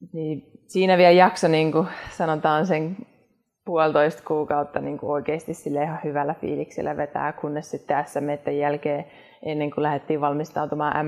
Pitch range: 150-170 Hz